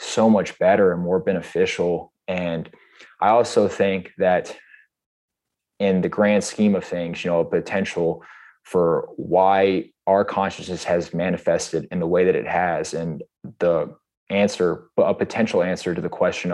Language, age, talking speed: English, 20-39, 150 wpm